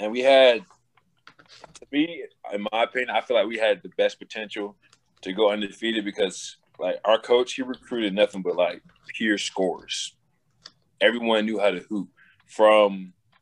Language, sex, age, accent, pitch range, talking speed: English, male, 20-39, American, 100-125 Hz, 160 wpm